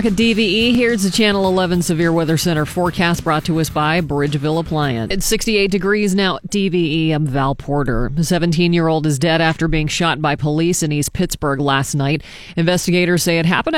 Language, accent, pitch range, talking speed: English, American, 150-190 Hz, 185 wpm